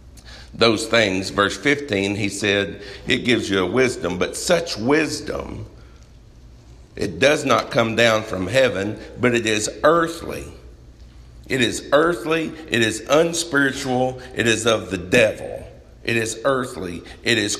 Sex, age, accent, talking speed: male, 50-69, American, 140 wpm